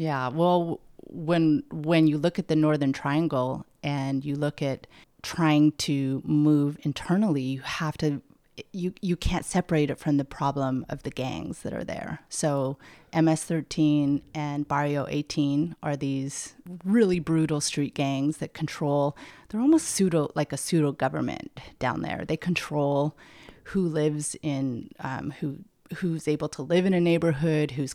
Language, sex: English, female